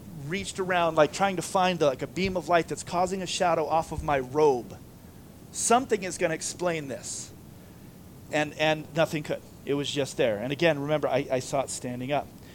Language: English